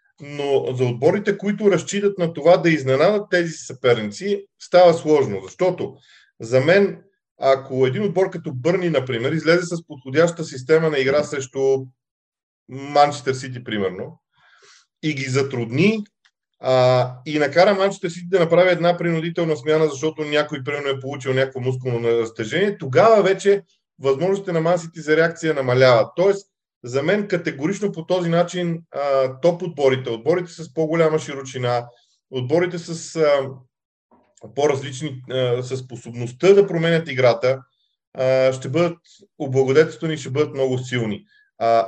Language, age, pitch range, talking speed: Bulgarian, 40-59, 130-180 Hz, 135 wpm